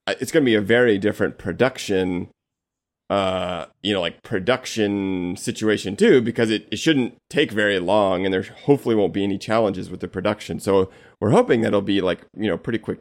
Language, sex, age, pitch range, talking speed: English, male, 30-49, 100-120 Hz, 195 wpm